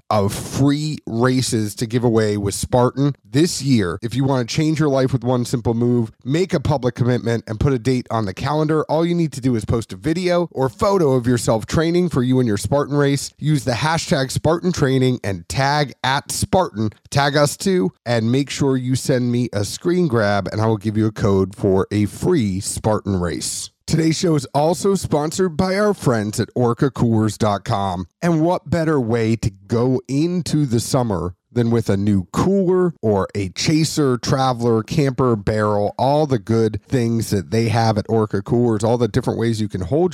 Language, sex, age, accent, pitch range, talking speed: English, male, 30-49, American, 110-145 Hz, 195 wpm